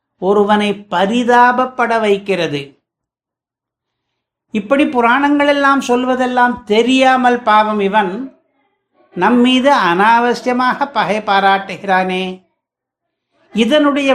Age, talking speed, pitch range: 60-79, 70 wpm, 205-255 Hz